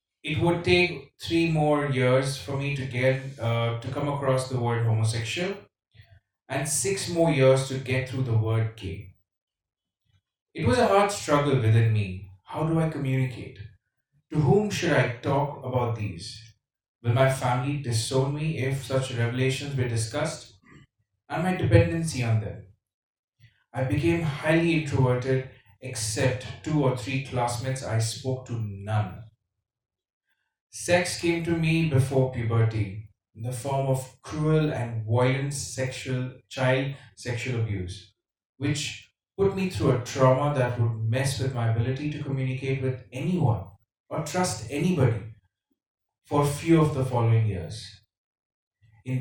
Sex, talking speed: male, 145 wpm